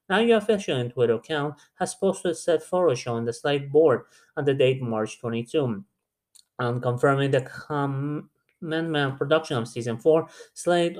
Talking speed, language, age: 160 wpm, English, 30-49